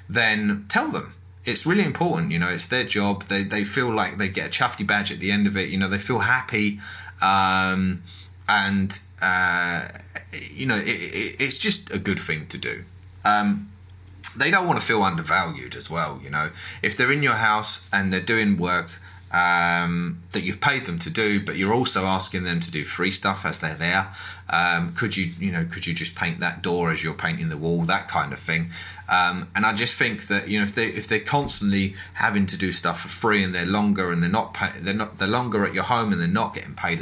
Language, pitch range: English, 90-110 Hz